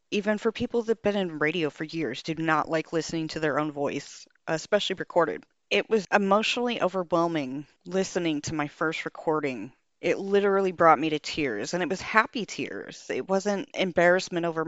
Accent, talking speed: American, 180 wpm